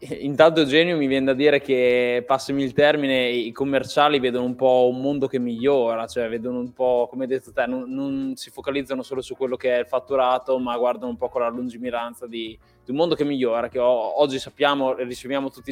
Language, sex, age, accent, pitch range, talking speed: Italian, male, 20-39, native, 125-140 Hz, 220 wpm